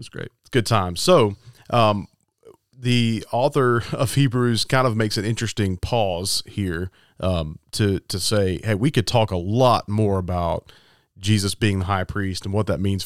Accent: American